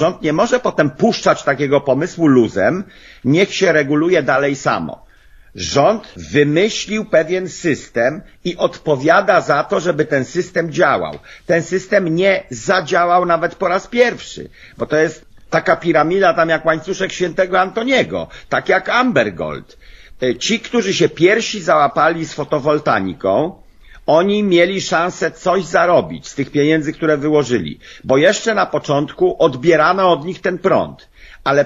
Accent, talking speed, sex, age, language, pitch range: native, 140 wpm, male, 50-69, Polish, 145-185 Hz